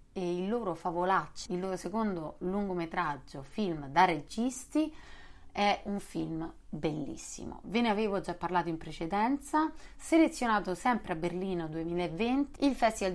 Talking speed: 130 wpm